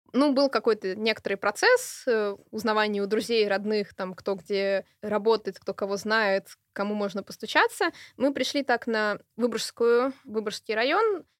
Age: 20-39